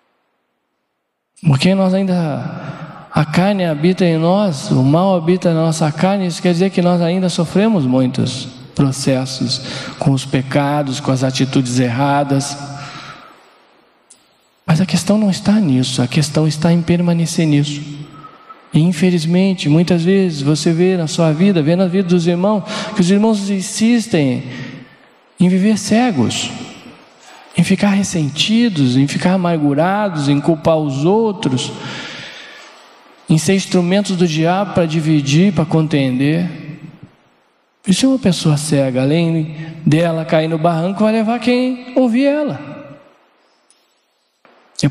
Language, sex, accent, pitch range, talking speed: Portuguese, male, Brazilian, 150-195 Hz, 130 wpm